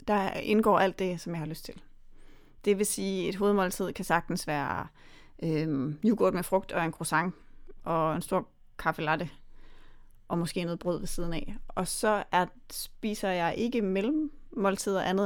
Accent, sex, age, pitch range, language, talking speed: native, female, 30-49, 170-205 Hz, Danish, 180 wpm